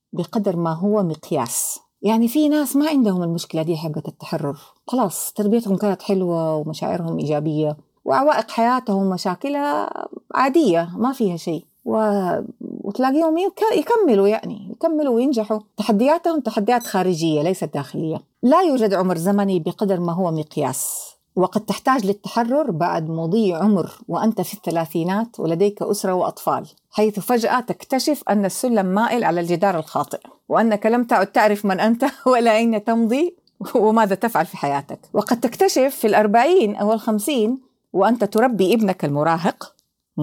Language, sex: Arabic, female